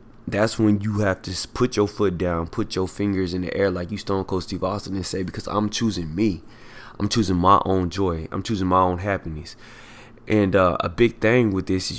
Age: 20-39